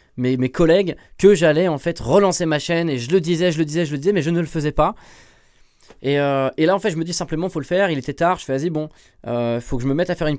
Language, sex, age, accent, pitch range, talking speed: French, male, 20-39, French, 130-170 Hz, 320 wpm